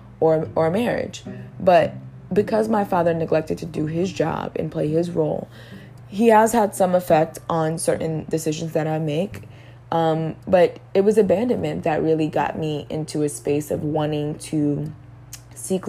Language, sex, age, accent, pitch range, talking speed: English, female, 20-39, American, 150-175 Hz, 160 wpm